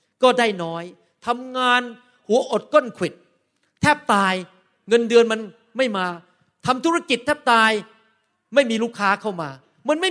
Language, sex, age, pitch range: Thai, male, 40-59, 185-265 Hz